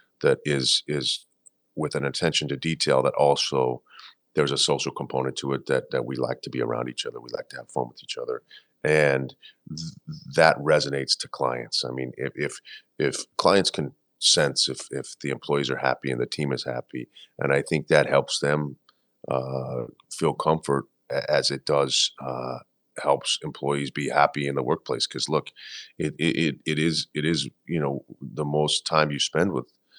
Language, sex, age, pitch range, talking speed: English, male, 40-59, 65-75 Hz, 185 wpm